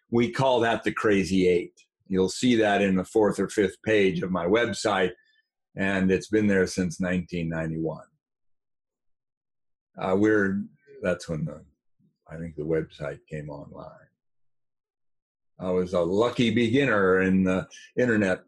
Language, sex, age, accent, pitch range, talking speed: English, male, 50-69, American, 95-125 Hz, 140 wpm